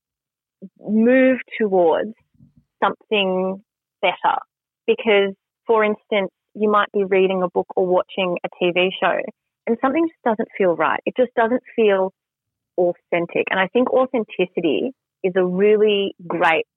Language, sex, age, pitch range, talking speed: English, female, 30-49, 185-240 Hz, 130 wpm